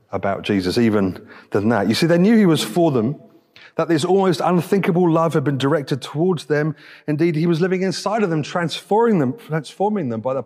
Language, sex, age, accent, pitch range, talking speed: English, male, 30-49, British, 155-200 Hz, 205 wpm